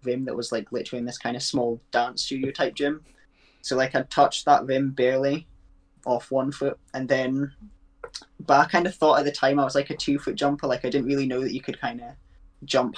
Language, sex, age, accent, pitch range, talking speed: English, male, 10-29, British, 130-145 Hz, 240 wpm